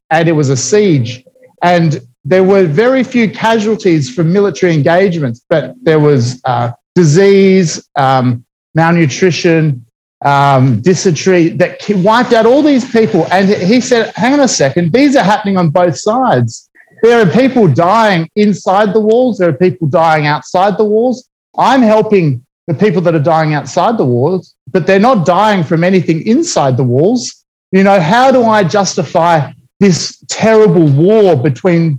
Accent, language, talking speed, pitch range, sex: Australian, English, 160 wpm, 150-205 Hz, male